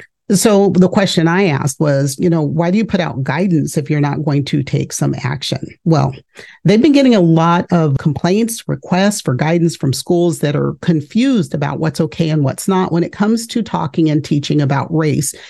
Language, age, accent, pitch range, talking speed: English, 50-69, American, 150-180 Hz, 205 wpm